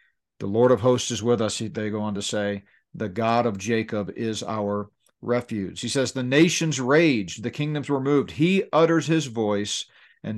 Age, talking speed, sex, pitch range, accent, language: 50-69, 190 wpm, male, 120-150 Hz, American, English